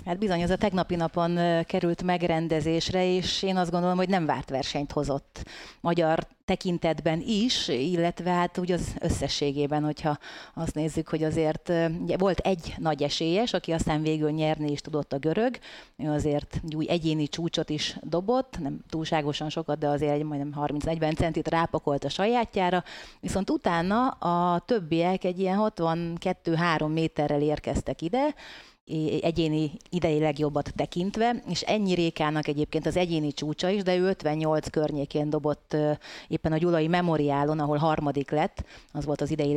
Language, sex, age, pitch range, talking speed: Hungarian, female, 30-49, 150-180 Hz, 150 wpm